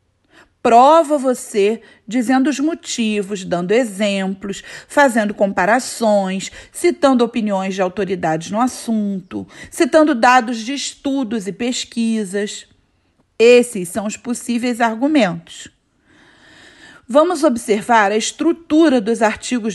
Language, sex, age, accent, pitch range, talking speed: Portuguese, female, 40-59, Brazilian, 210-280 Hz, 95 wpm